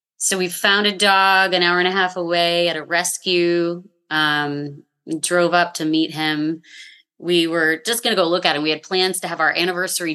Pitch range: 155-185 Hz